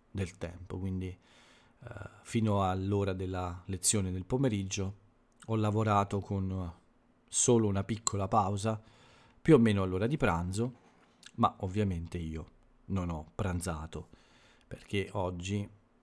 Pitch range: 95-115 Hz